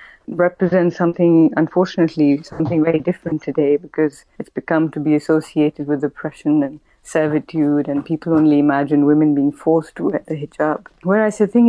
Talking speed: 160 wpm